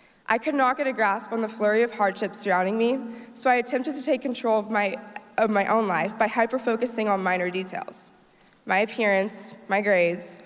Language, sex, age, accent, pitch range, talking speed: English, female, 20-39, American, 200-245 Hz, 195 wpm